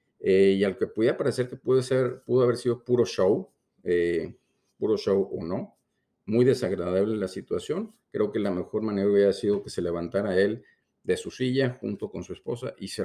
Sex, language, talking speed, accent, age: male, Spanish, 200 wpm, Mexican, 50-69